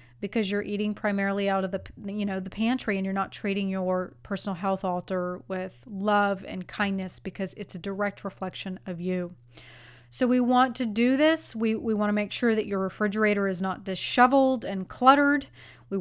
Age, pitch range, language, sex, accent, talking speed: 30-49, 190-220 Hz, English, female, American, 190 wpm